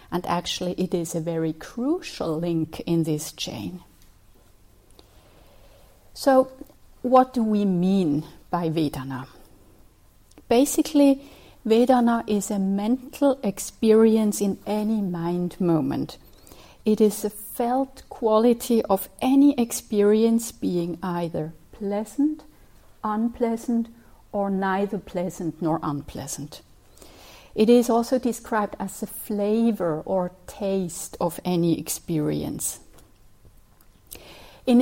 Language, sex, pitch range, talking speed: English, female, 175-230 Hz, 100 wpm